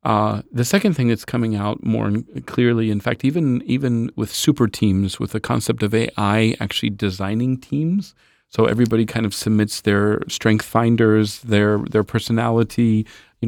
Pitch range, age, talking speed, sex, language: 105-120 Hz, 40-59, 160 wpm, male, Polish